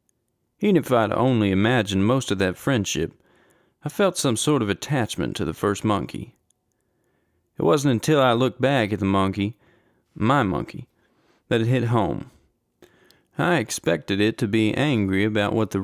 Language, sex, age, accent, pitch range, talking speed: English, male, 40-59, American, 95-130 Hz, 165 wpm